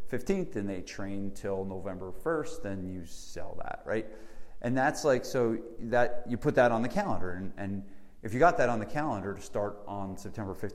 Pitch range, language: 100-120 Hz, English